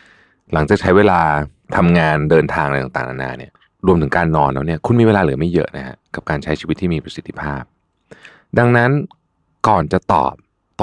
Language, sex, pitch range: Thai, male, 75-105 Hz